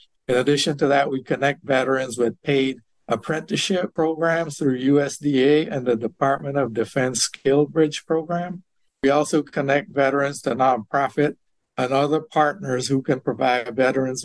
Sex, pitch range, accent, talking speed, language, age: male, 120-145 Hz, American, 145 wpm, English, 60-79